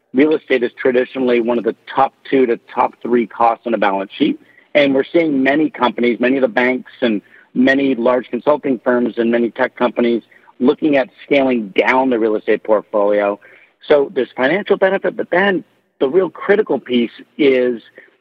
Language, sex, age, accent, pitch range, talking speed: English, male, 50-69, American, 125-155 Hz, 180 wpm